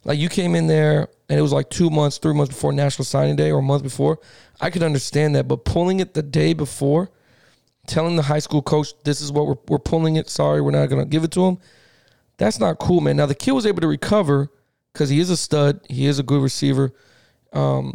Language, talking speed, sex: English, 245 wpm, male